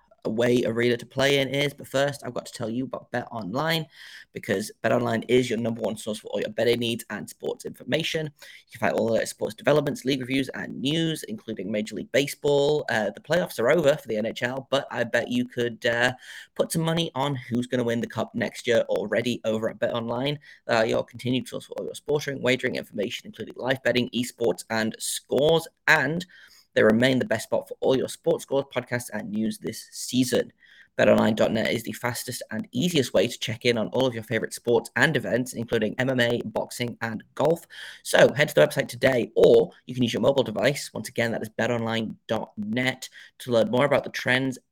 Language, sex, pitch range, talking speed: English, male, 115-145 Hz, 210 wpm